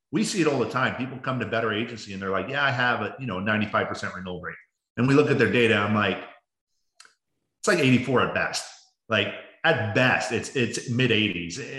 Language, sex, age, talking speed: English, male, 30-49, 225 wpm